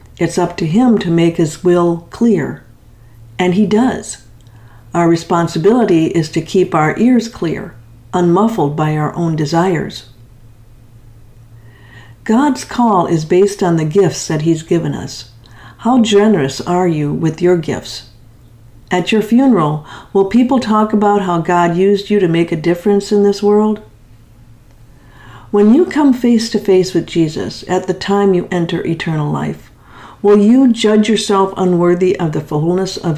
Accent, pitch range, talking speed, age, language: American, 150-205 Hz, 155 wpm, 50-69, English